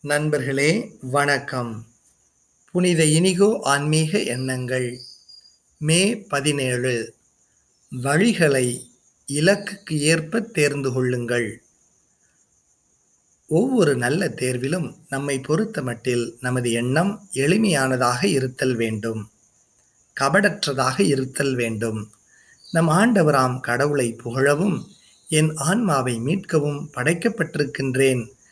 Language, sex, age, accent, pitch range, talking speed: Tamil, male, 30-49, native, 125-170 Hz, 75 wpm